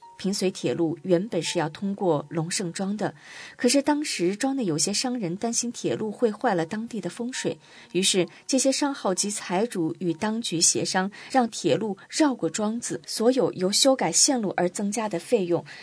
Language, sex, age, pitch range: Chinese, female, 20-39, 170-230 Hz